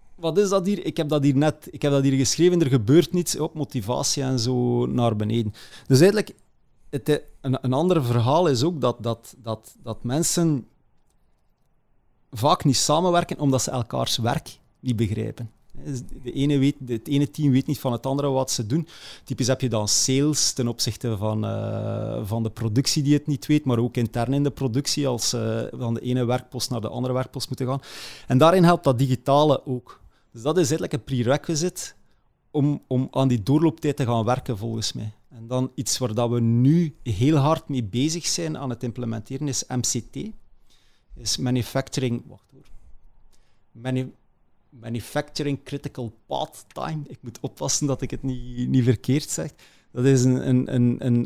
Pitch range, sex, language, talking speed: 120-145 Hz, male, Dutch, 170 wpm